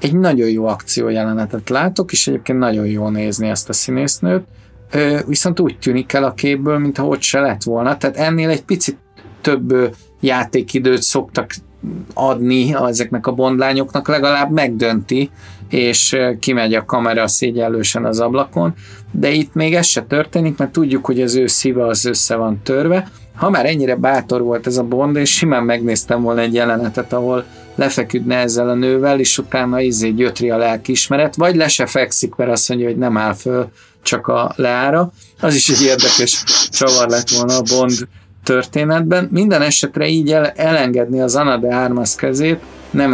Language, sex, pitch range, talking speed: Hungarian, male, 120-145 Hz, 165 wpm